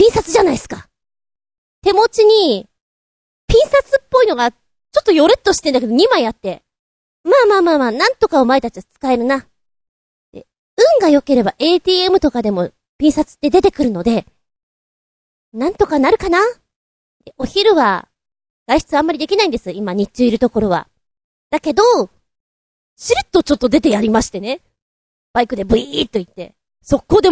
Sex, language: female, Japanese